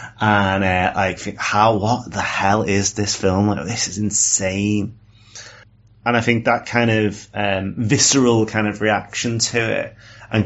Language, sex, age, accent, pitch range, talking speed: English, male, 30-49, British, 95-110 Hz, 160 wpm